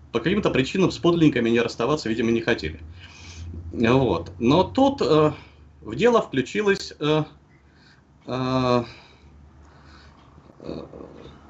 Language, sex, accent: Russian, male, native